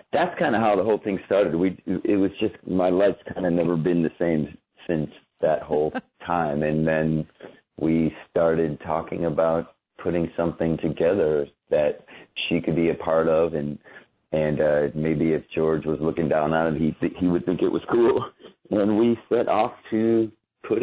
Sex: male